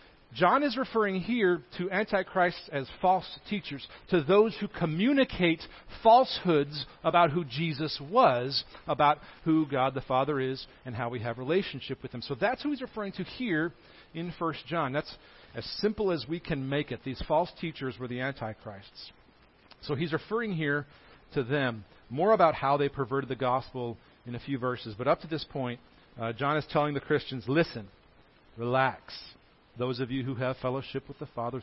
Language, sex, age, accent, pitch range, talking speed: English, male, 40-59, American, 130-180 Hz, 180 wpm